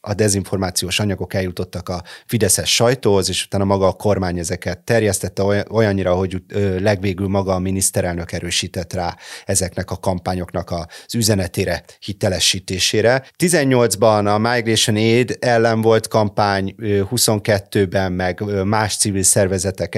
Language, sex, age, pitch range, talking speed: Hungarian, male, 30-49, 95-110 Hz, 120 wpm